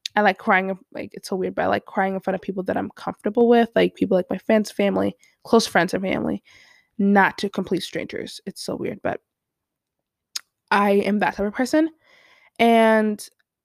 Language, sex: English, female